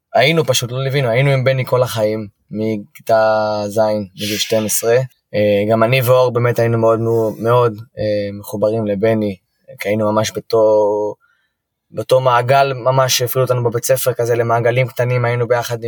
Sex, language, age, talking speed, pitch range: male, Hebrew, 20-39, 140 wpm, 110-125 Hz